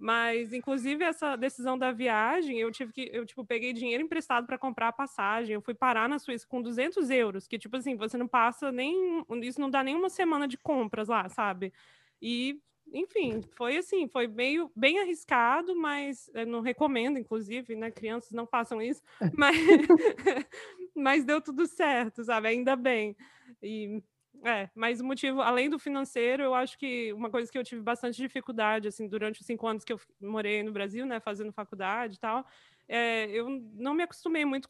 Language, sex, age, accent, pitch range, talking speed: Portuguese, female, 20-39, Brazilian, 225-270 Hz, 185 wpm